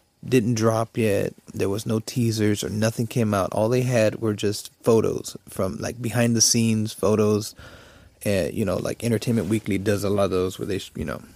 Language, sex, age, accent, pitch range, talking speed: English, male, 30-49, American, 100-115 Hz, 195 wpm